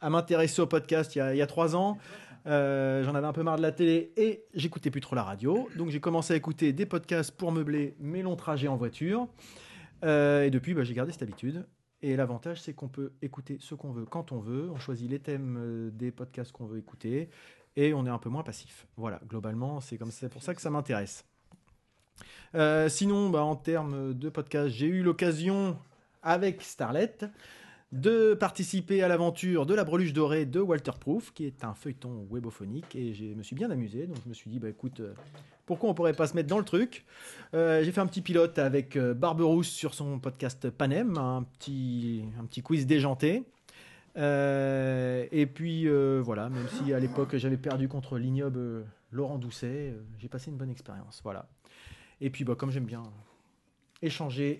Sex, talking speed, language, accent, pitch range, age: male, 200 wpm, French, French, 125-165 Hz, 30-49